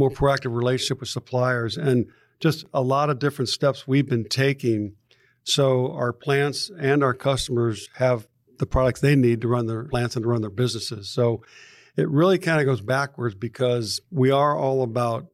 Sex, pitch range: male, 120-140 Hz